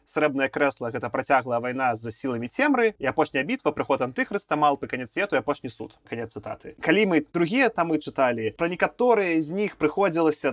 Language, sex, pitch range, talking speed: Russian, male, 125-155 Hz, 175 wpm